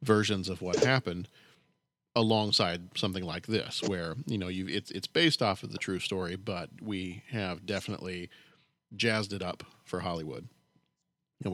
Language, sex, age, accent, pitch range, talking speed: English, male, 40-59, American, 90-110 Hz, 155 wpm